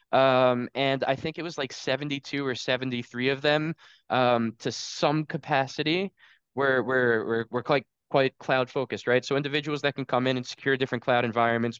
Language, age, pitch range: English, 10-29, 120-140 Hz